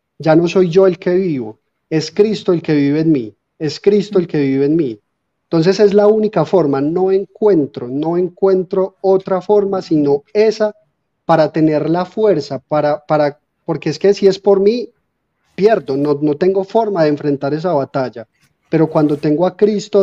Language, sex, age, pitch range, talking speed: Spanish, male, 30-49, 140-180 Hz, 185 wpm